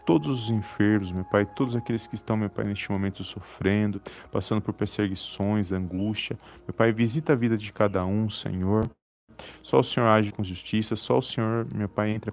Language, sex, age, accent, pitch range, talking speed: Portuguese, male, 40-59, Brazilian, 100-115 Hz, 190 wpm